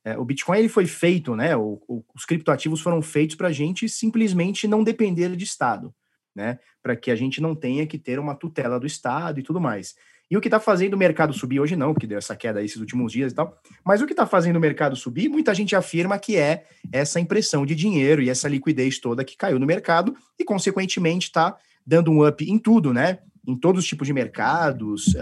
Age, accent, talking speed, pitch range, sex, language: 30-49, Brazilian, 230 wpm, 130-175 Hz, male, Portuguese